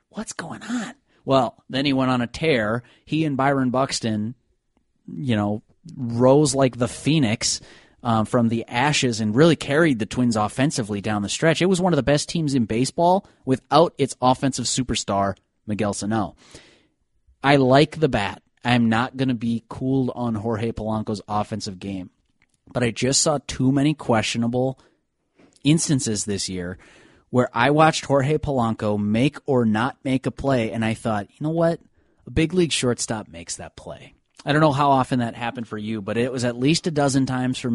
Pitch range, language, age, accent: 110-140 Hz, English, 30-49, American